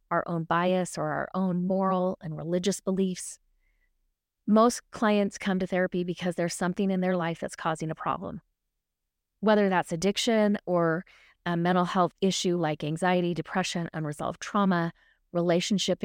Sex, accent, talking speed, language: female, American, 145 wpm, English